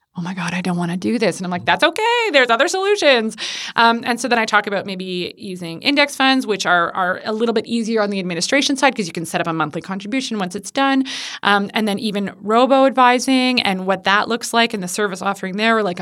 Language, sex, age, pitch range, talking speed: English, female, 20-39, 185-235 Hz, 250 wpm